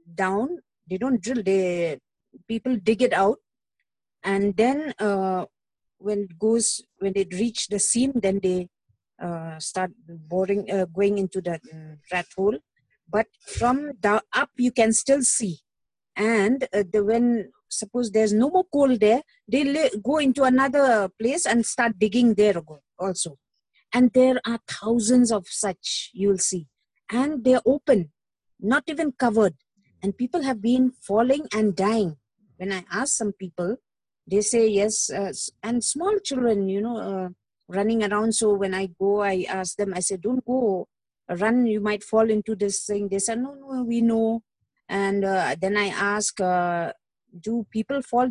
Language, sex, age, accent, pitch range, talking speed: English, female, 50-69, Indian, 195-240 Hz, 165 wpm